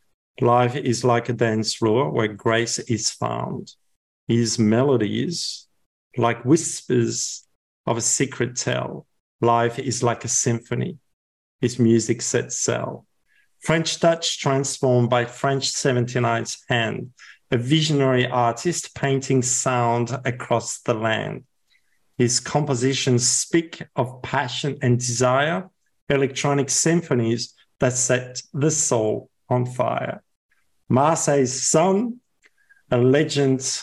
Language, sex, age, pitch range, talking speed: English, male, 50-69, 120-140 Hz, 110 wpm